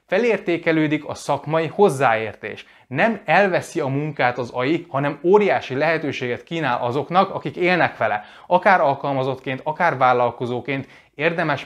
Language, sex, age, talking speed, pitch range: Hungarian, male, 20-39, 120 wpm, 130-170 Hz